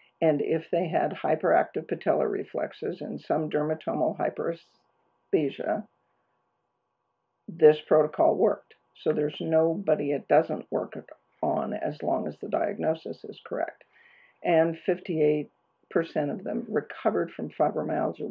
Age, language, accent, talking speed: 60-79, English, American, 115 wpm